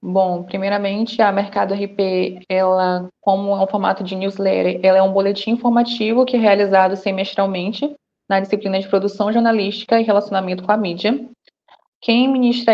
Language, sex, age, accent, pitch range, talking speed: Portuguese, female, 20-39, Brazilian, 200-235 Hz, 155 wpm